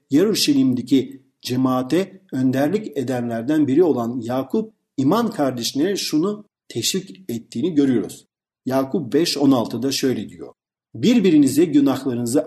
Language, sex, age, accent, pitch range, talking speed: Turkish, male, 50-69, native, 135-215 Hz, 90 wpm